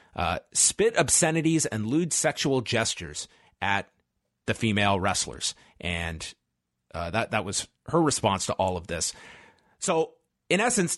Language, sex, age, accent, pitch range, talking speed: English, male, 30-49, American, 110-150 Hz, 135 wpm